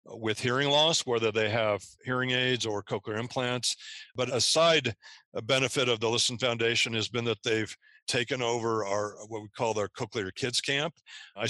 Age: 50-69